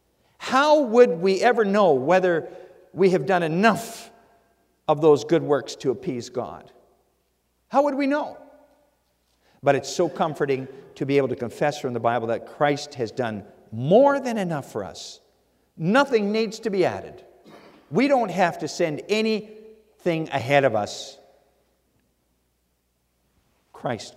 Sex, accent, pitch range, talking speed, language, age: male, American, 110-170 Hz, 140 wpm, English, 50-69